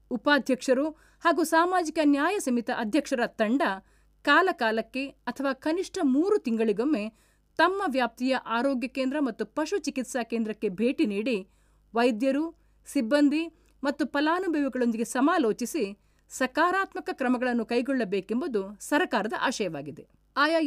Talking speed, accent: 95 wpm, native